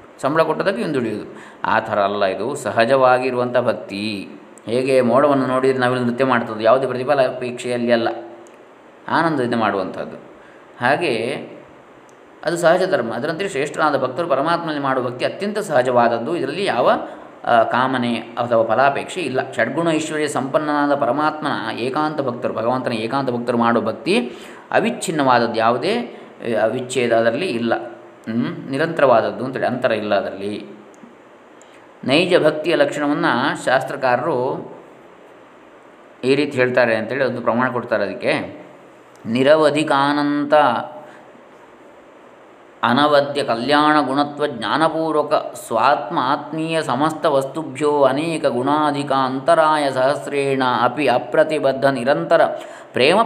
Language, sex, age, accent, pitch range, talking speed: Kannada, male, 20-39, native, 125-150 Hz, 95 wpm